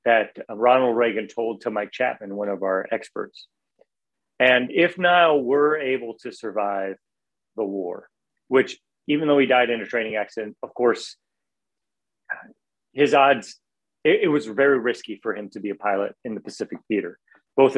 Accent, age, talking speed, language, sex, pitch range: American, 30-49, 165 wpm, English, male, 110-145 Hz